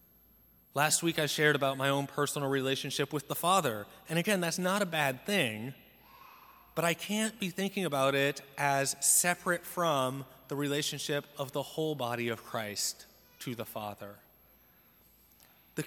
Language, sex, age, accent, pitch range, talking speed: English, male, 30-49, American, 130-170 Hz, 155 wpm